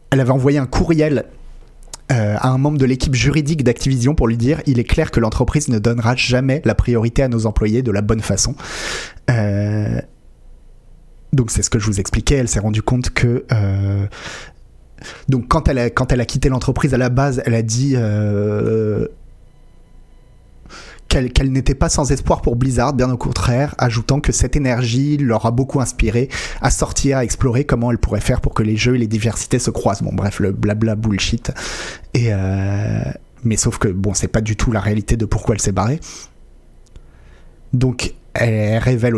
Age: 30-49